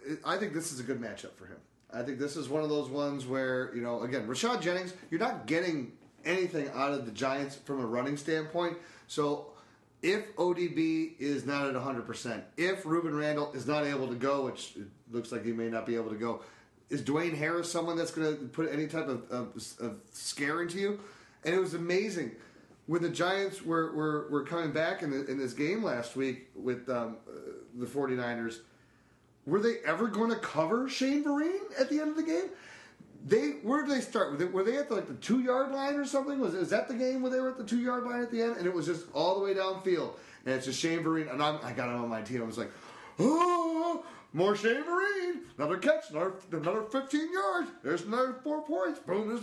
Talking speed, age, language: 215 wpm, 30-49, English